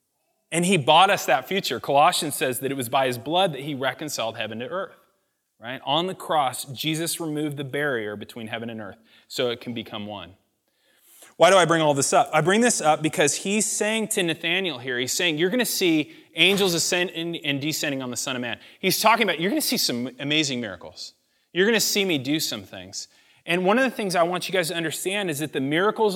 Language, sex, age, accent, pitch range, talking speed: English, male, 30-49, American, 145-190 Hz, 225 wpm